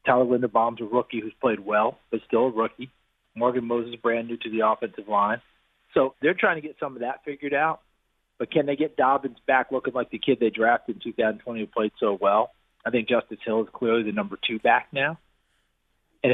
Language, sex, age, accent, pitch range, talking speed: English, male, 40-59, American, 120-145 Hz, 215 wpm